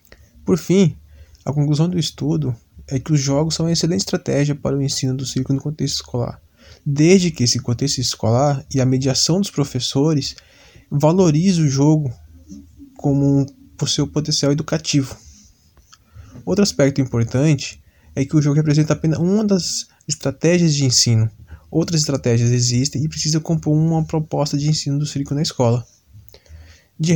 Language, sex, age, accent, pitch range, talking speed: Portuguese, male, 20-39, Brazilian, 120-155 Hz, 150 wpm